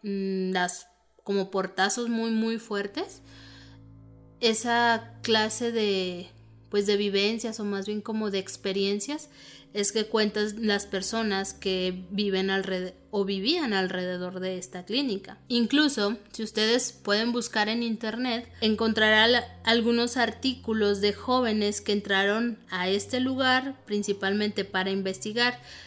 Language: Spanish